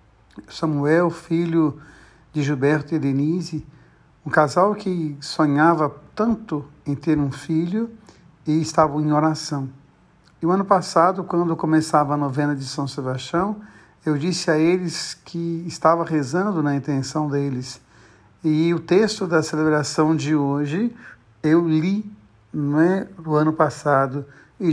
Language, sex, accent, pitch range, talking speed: Portuguese, male, Brazilian, 140-170 Hz, 130 wpm